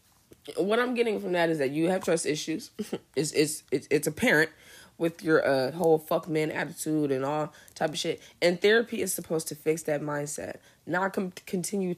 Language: English